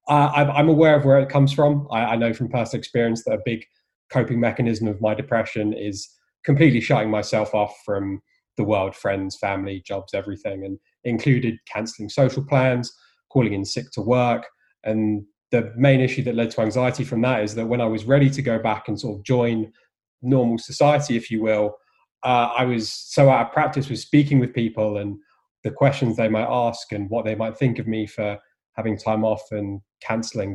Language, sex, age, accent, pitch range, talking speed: English, male, 20-39, British, 110-130 Hz, 200 wpm